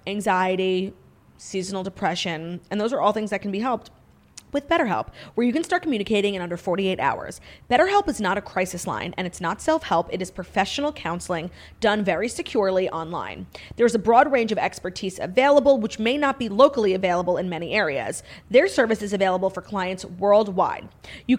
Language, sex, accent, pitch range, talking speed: English, female, American, 190-260 Hz, 180 wpm